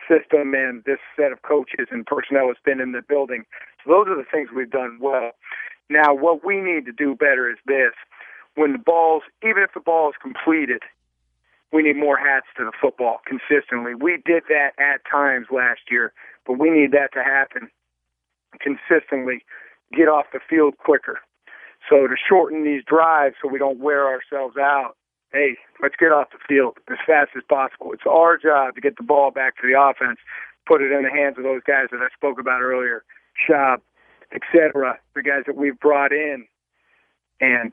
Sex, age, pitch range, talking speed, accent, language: male, 50-69, 130-155 Hz, 190 wpm, American, English